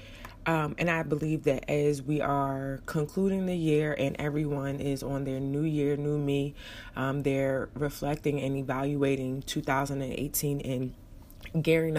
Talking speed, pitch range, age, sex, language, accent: 140 wpm, 120-155 Hz, 20-39, female, English, American